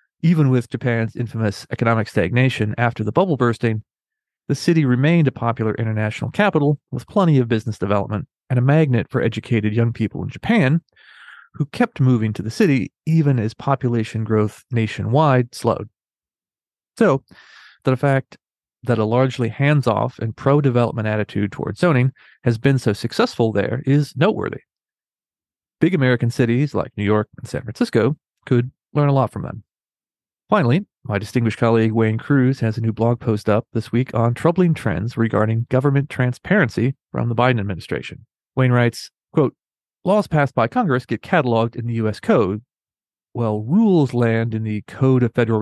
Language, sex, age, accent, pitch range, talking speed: English, male, 30-49, American, 110-135 Hz, 160 wpm